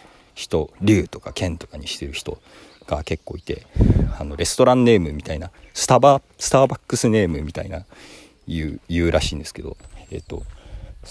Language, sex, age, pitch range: Japanese, male, 40-59, 80-100 Hz